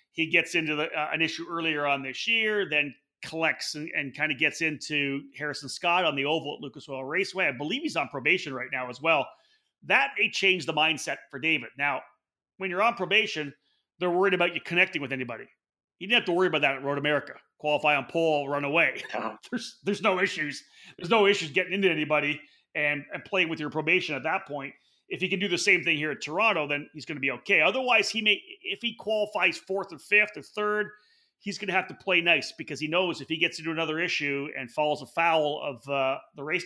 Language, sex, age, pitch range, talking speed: English, male, 30-49, 145-190 Hz, 225 wpm